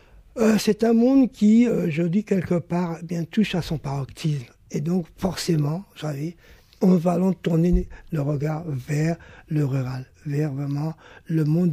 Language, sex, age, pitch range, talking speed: French, male, 60-79, 170-225 Hz, 170 wpm